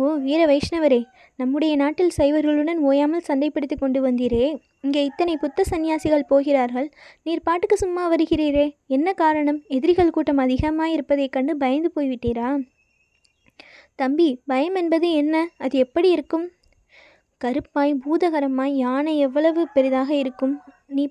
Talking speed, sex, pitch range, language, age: 115 wpm, female, 270-315 Hz, Tamil, 20-39